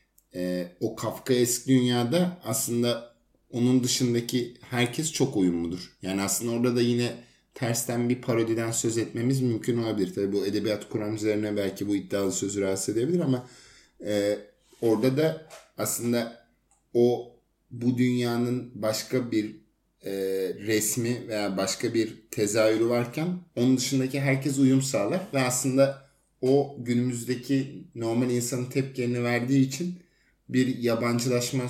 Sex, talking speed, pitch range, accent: male, 125 wpm, 105-125 Hz, native